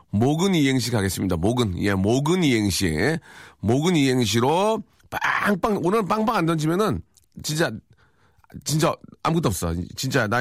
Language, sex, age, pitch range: Korean, male, 40-59, 110-170 Hz